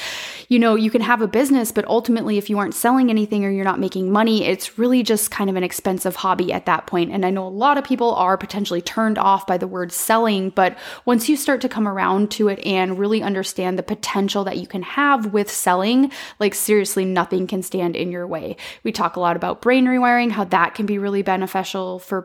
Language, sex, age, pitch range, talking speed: English, female, 20-39, 185-225 Hz, 235 wpm